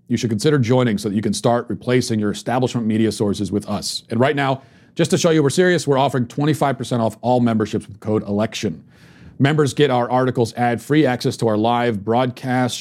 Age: 40-59